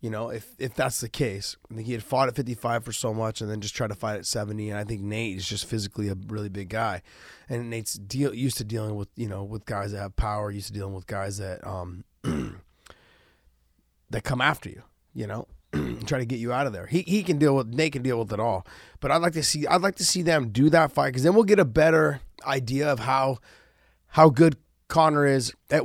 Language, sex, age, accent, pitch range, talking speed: English, male, 30-49, American, 110-140 Hz, 255 wpm